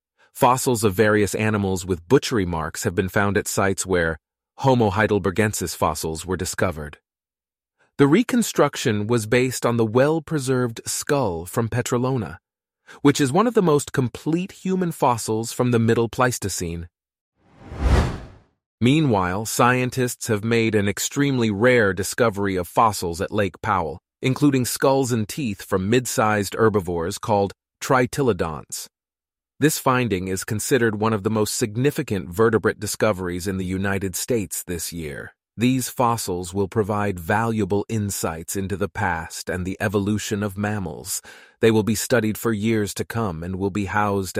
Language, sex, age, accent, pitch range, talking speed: English, male, 30-49, American, 95-125 Hz, 145 wpm